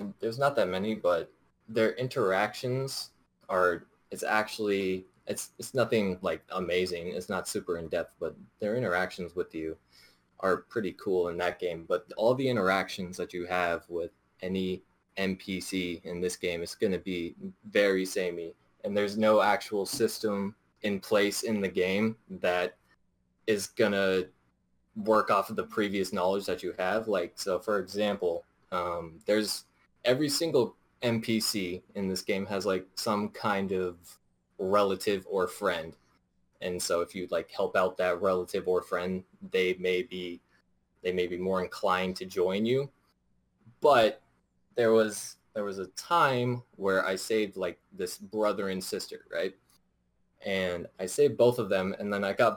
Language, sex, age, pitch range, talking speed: English, male, 20-39, 90-110 Hz, 160 wpm